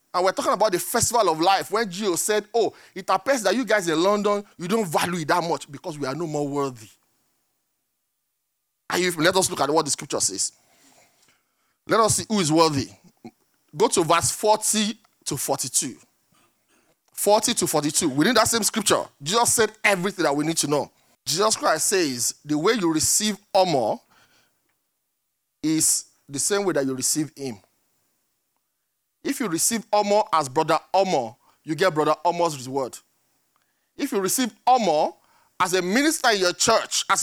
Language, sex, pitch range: English, male, 155-220 Hz